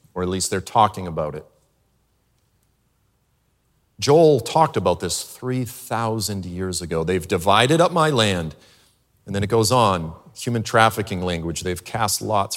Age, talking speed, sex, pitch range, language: 40-59, 145 wpm, male, 95-130 Hz, English